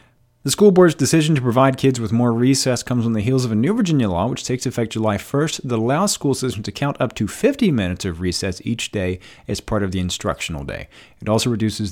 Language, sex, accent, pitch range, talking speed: English, male, American, 105-140 Hz, 235 wpm